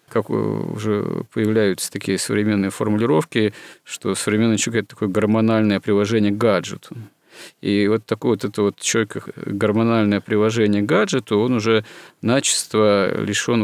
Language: Russian